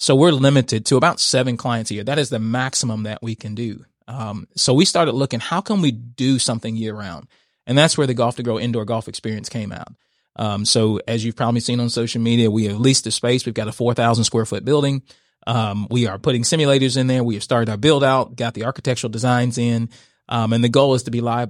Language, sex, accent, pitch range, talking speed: English, male, American, 110-130 Hz, 245 wpm